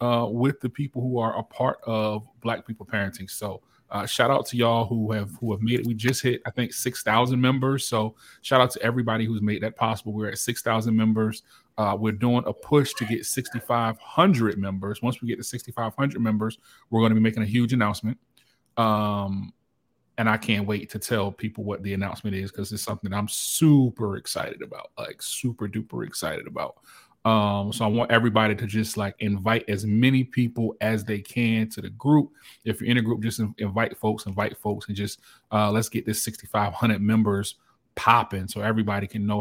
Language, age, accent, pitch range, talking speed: English, 30-49, American, 105-115 Hz, 200 wpm